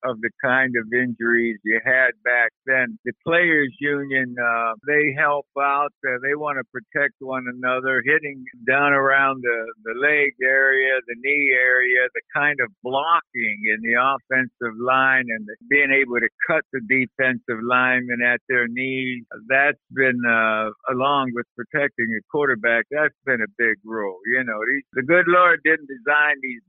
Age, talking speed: 60-79, 165 wpm